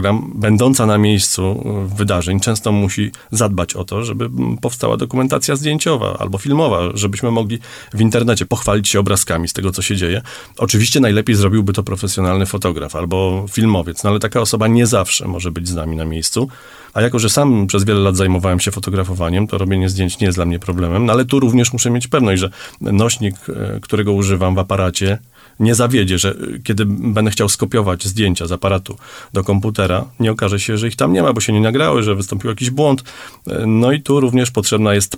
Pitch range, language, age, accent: 95-120 Hz, Polish, 30-49, native